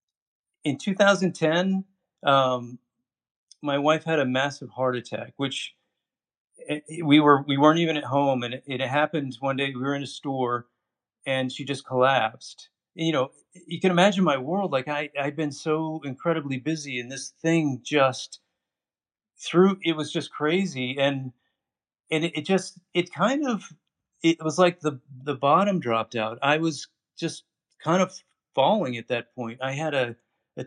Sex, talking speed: male, 170 wpm